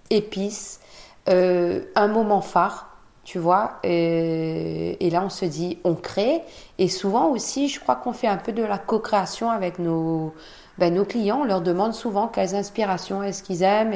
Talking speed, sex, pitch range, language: 175 wpm, female, 170-205 Hz, French